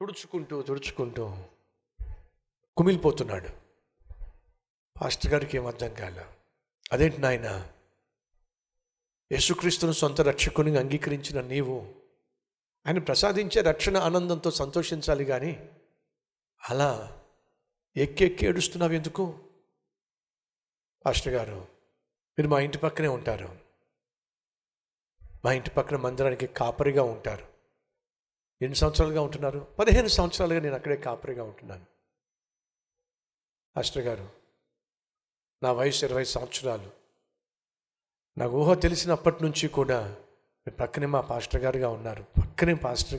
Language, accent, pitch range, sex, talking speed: Telugu, native, 120-170 Hz, male, 90 wpm